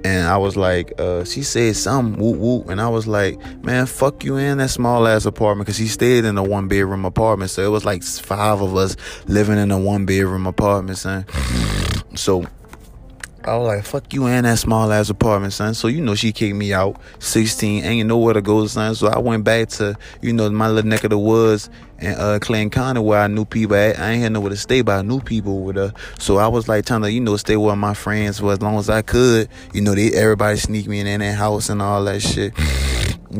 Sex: male